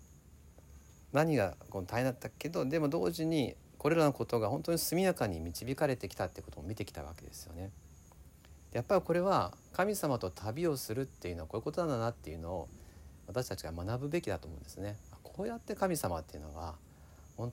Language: Japanese